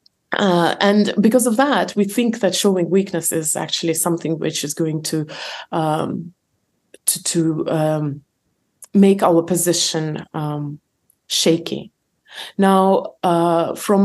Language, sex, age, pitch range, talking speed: English, female, 30-49, 170-205 Hz, 125 wpm